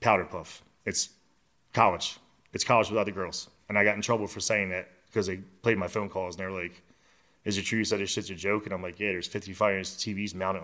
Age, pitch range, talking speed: 30-49, 95-105 Hz, 250 wpm